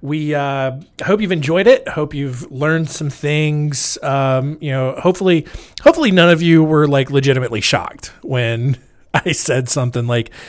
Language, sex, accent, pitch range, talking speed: English, male, American, 125-155 Hz, 160 wpm